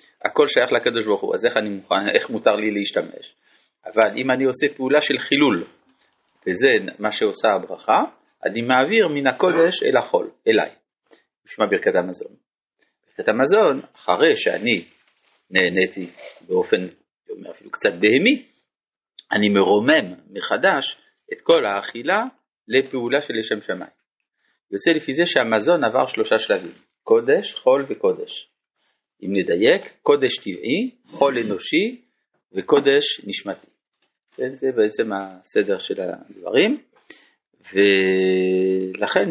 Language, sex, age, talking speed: Hebrew, male, 40-59, 120 wpm